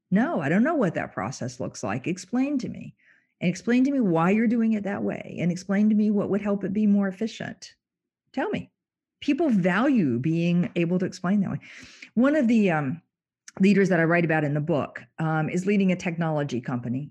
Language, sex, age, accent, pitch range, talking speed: English, female, 50-69, American, 155-225 Hz, 215 wpm